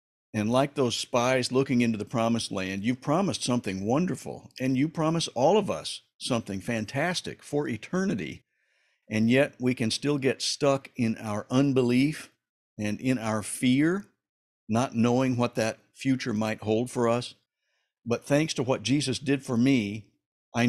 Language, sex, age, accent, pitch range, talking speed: English, male, 60-79, American, 110-135 Hz, 160 wpm